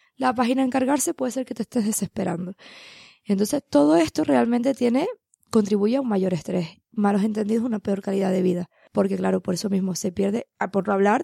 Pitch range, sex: 200-270 Hz, female